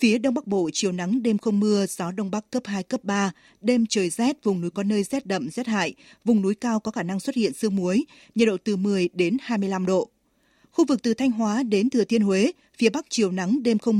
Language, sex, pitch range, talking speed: Vietnamese, female, 195-240 Hz, 255 wpm